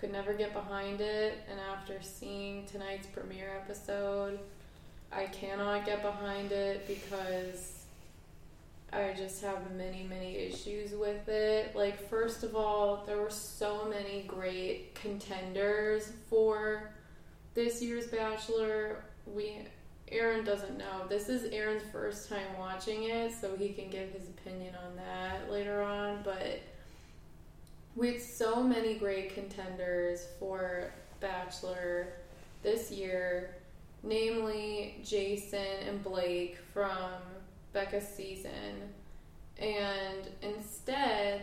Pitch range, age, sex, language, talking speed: 185-210 Hz, 20-39, female, English, 115 wpm